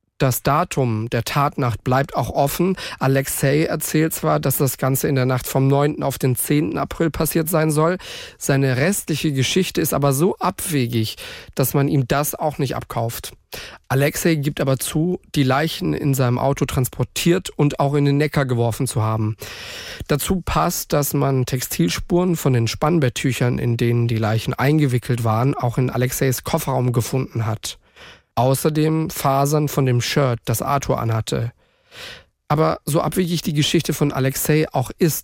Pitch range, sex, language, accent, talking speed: 125-155 Hz, male, German, German, 160 wpm